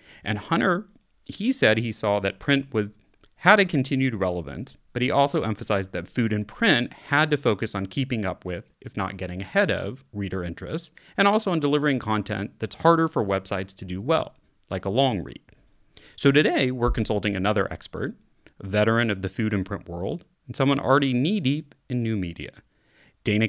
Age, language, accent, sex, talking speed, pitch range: 30-49, English, American, male, 185 wpm, 100-135 Hz